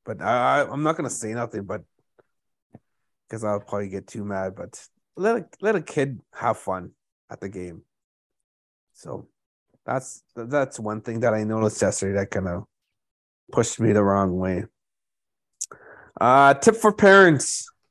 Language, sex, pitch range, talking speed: English, male, 110-145 Hz, 155 wpm